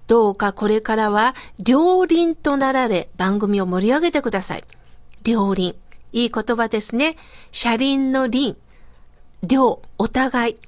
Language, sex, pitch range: Japanese, female, 215-330 Hz